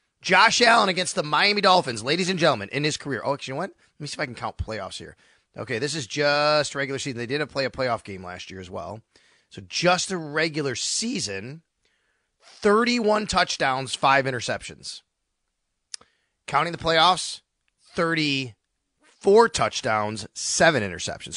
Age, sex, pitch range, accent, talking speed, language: 30-49, male, 110-155 Hz, American, 165 wpm, English